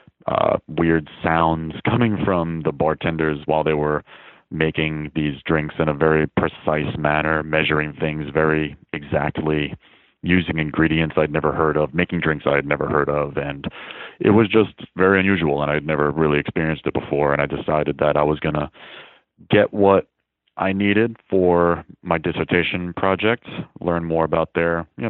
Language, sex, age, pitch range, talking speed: English, male, 30-49, 75-80 Hz, 165 wpm